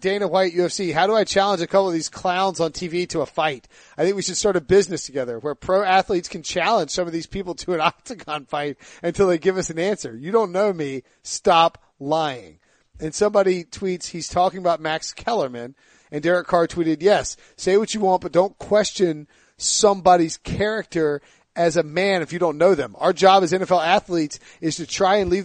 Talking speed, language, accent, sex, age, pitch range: 210 wpm, English, American, male, 40-59, 160-195 Hz